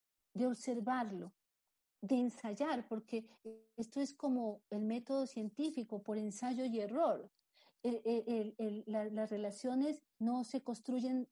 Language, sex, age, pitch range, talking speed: Spanish, female, 40-59, 220-255 Hz, 135 wpm